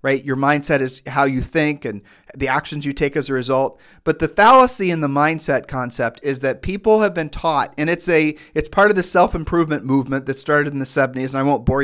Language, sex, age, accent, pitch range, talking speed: English, male, 40-59, American, 135-170 Hz, 240 wpm